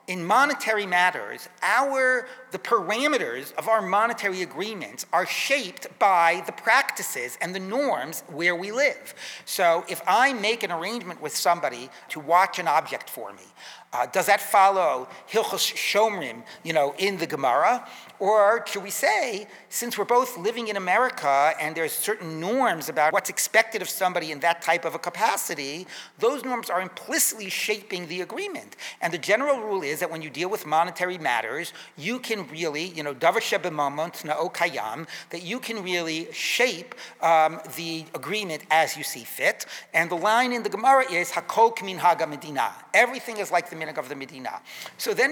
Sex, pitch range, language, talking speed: male, 165-225 Hz, English, 160 wpm